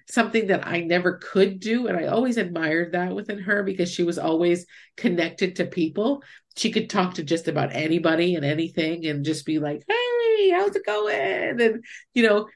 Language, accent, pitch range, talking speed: English, American, 165-210 Hz, 190 wpm